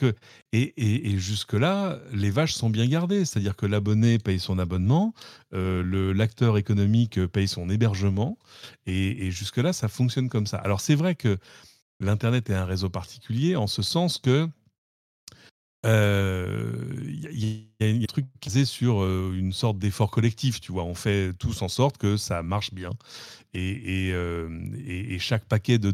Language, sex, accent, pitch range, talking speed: French, male, French, 95-120 Hz, 175 wpm